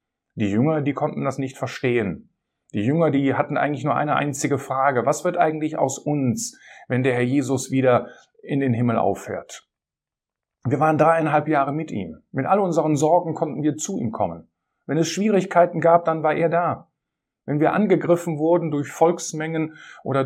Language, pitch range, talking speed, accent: German, 145-180 Hz, 180 wpm, German